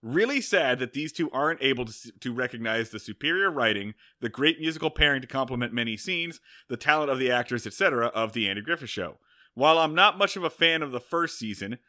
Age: 30-49